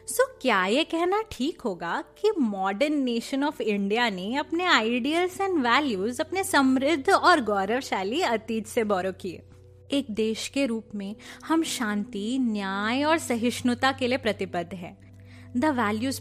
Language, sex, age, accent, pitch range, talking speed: Hindi, female, 20-39, native, 200-310 Hz, 145 wpm